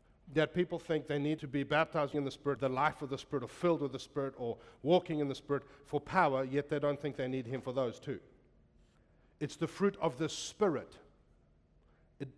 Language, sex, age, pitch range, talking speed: English, male, 40-59, 120-155 Hz, 220 wpm